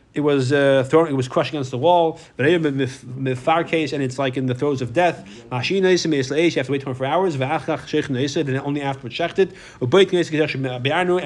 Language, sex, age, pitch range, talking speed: English, male, 30-49, 135-185 Hz, 175 wpm